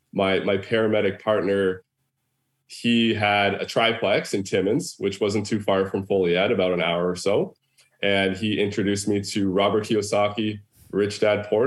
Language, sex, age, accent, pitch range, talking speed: English, male, 20-39, American, 95-115 Hz, 160 wpm